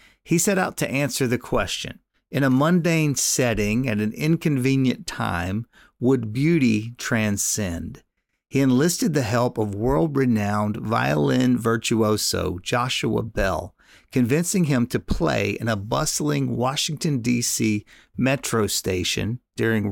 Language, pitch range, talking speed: English, 105-135 Hz, 120 wpm